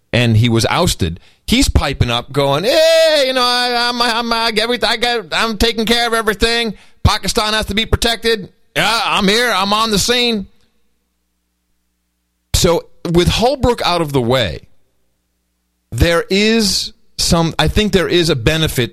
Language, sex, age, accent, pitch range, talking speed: English, male, 40-59, American, 115-180 Hz, 160 wpm